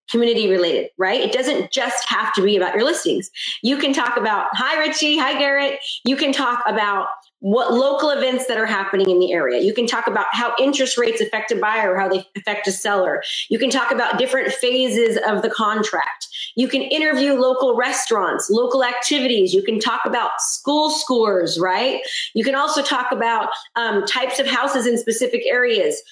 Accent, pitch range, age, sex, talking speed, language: American, 220-285 Hz, 30-49, female, 190 wpm, English